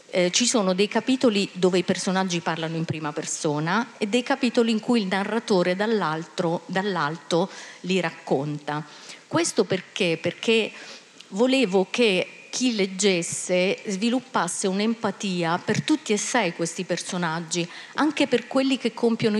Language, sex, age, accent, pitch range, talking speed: Italian, female, 40-59, native, 165-215 Hz, 130 wpm